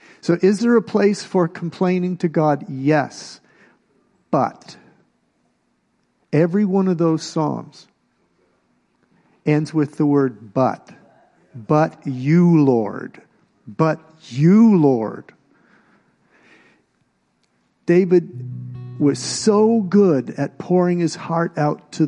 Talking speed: 100 wpm